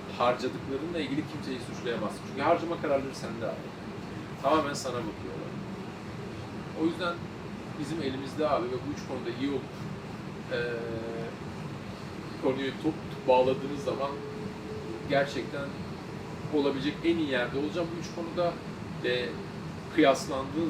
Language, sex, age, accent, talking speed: Turkish, male, 40-59, native, 115 wpm